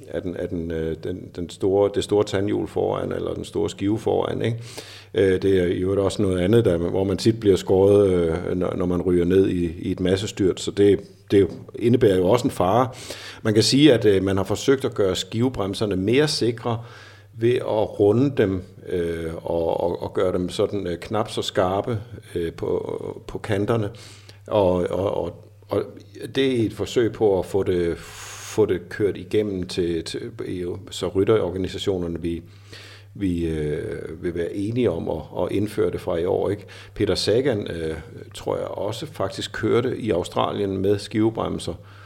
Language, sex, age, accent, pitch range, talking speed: Danish, male, 50-69, native, 90-110 Hz, 165 wpm